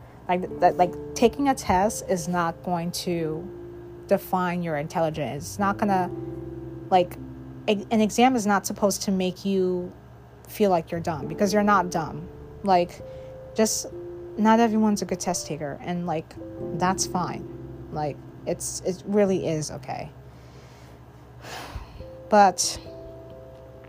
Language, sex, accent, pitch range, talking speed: English, female, American, 130-185 Hz, 130 wpm